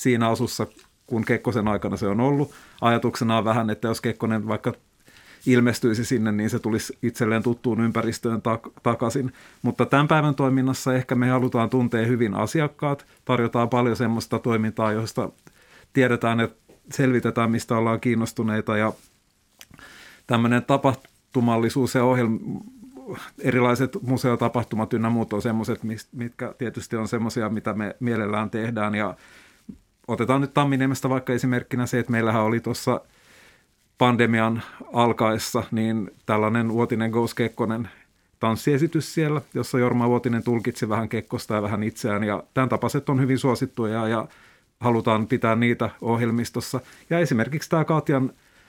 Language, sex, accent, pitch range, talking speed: Finnish, male, native, 115-130 Hz, 135 wpm